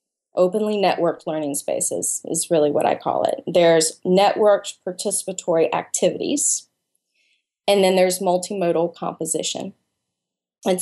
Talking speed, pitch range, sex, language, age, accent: 110 wpm, 170-200 Hz, female, English, 20-39, American